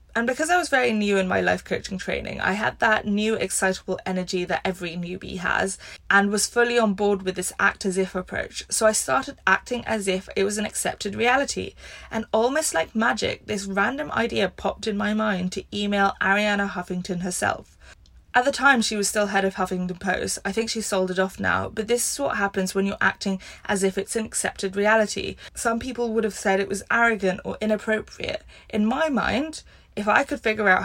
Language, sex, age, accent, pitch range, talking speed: English, female, 20-39, British, 195-240 Hz, 210 wpm